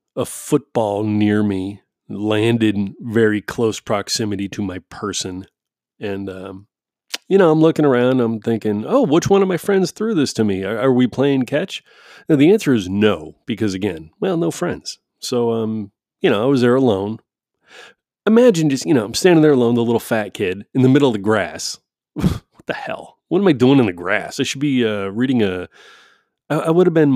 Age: 30-49